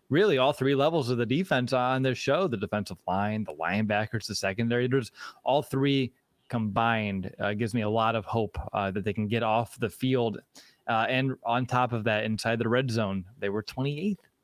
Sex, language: male, English